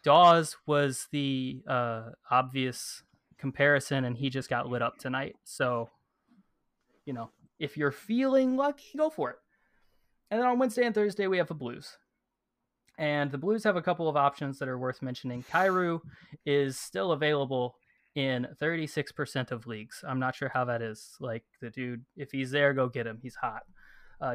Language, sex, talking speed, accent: English, male, 175 wpm, American